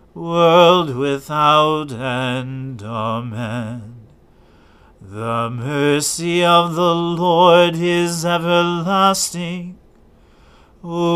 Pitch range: 145-175 Hz